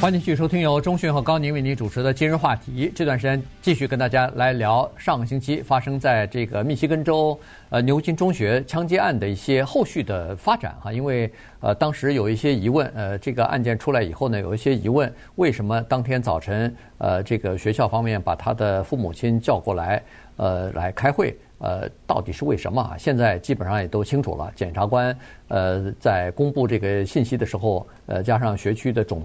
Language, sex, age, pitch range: Chinese, male, 50-69, 105-135 Hz